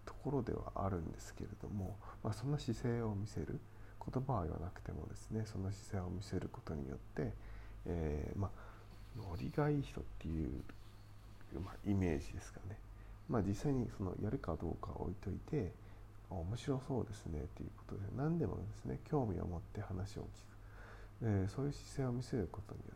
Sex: male